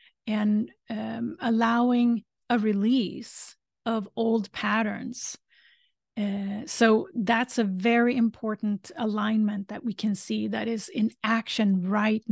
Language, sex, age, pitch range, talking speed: English, female, 40-59, 210-235 Hz, 115 wpm